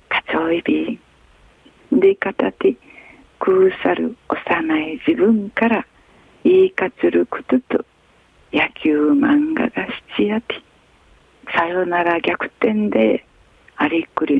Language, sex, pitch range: Japanese, female, 200-300 Hz